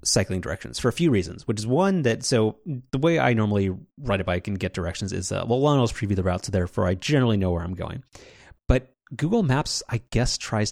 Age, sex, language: 30-49, male, English